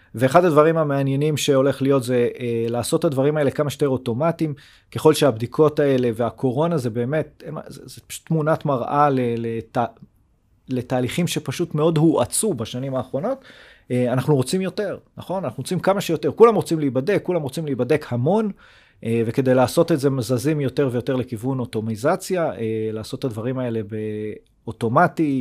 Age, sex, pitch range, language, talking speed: 30-49, male, 125-160 Hz, Hebrew, 140 wpm